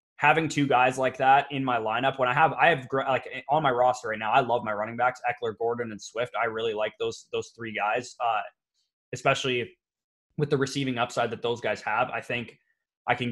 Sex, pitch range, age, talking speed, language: male, 115-130 Hz, 20-39, 220 wpm, English